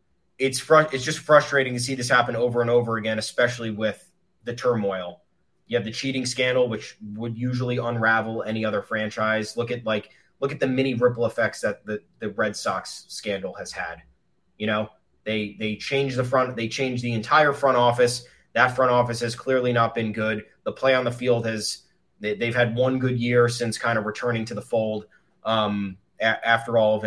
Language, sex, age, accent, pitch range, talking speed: English, male, 20-39, American, 110-130 Hz, 200 wpm